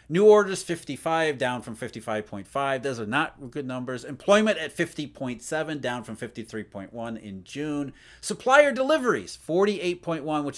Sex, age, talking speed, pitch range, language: male, 40-59, 130 wpm, 130-185 Hz, English